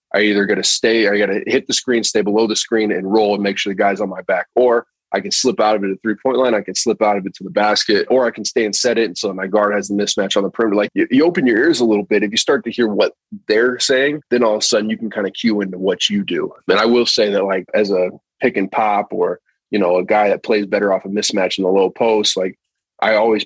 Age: 20-39